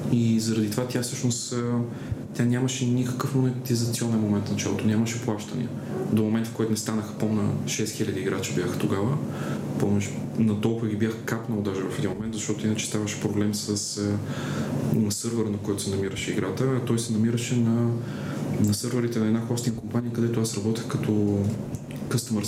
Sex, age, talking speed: male, 20-39, 165 wpm